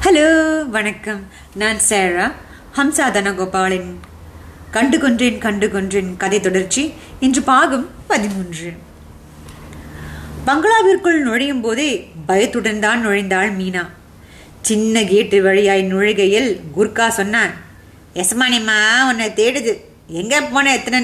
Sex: female